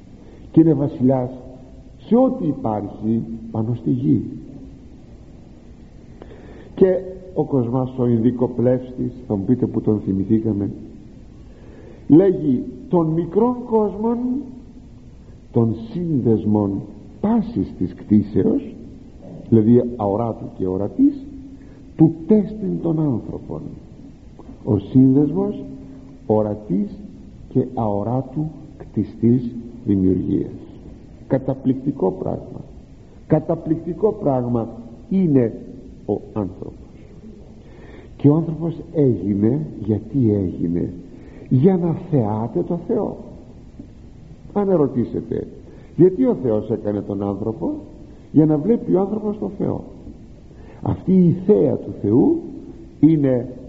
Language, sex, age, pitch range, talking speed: Greek, male, 60-79, 110-170 Hz, 95 wpm